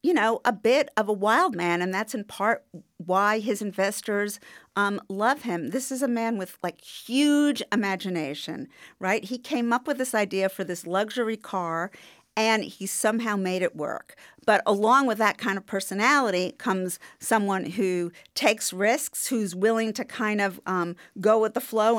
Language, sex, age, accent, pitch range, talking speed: English, female, 50-69, American, 195-260 Hz, 175 wpm